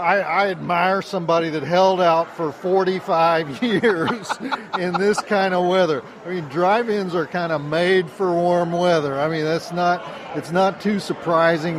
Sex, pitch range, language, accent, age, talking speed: male, 165-220 Hz, English, American, 50-69, 170 wpm